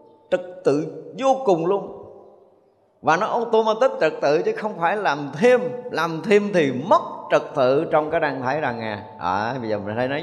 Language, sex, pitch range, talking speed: Vietnamese, male, 115-190 Hz, 190 wpm